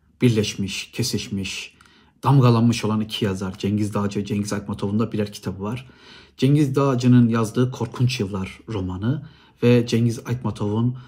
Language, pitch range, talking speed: Turkish, 105-135 Hz, 130 wpm